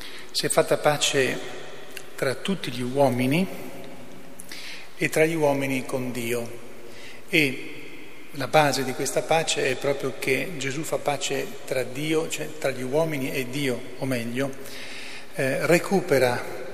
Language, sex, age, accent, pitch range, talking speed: Italian, male, 40-59, native, 130-145 Hz, 135 wpm